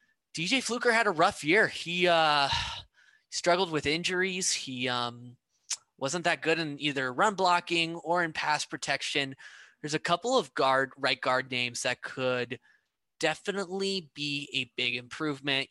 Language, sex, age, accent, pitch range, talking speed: English, male, 20-39, American, 130-170 Hz, 150 wpm